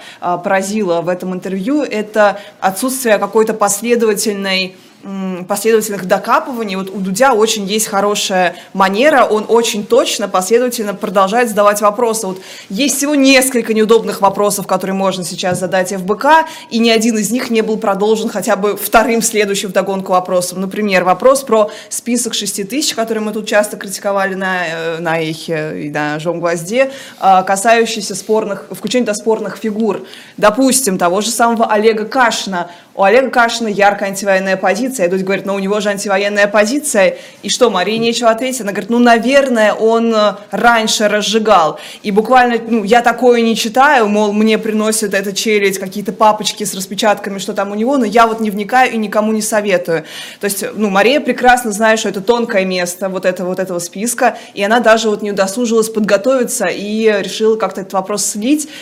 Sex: female